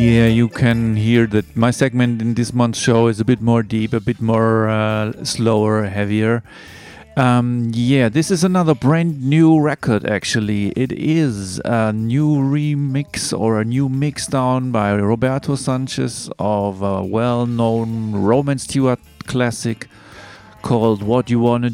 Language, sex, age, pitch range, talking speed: English, male, 40-59, 105-130 Hz, 145 wpm